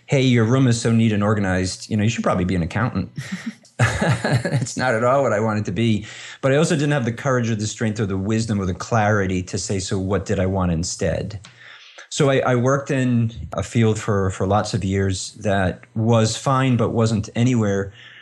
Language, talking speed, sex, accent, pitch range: English, 220 wpm, male, American, 95-115 Hz